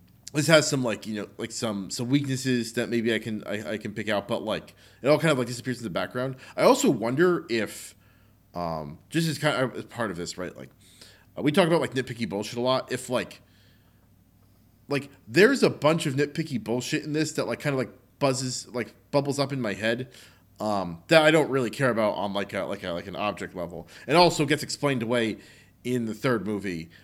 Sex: male